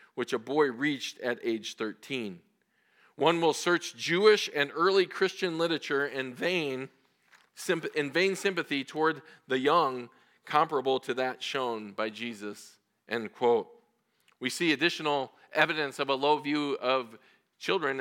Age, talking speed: 40-59, 135 wpm